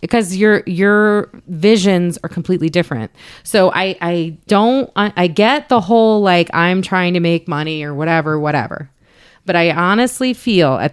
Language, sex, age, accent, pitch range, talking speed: English, female, 30-49, American, 165-225 Hz, 165 wpm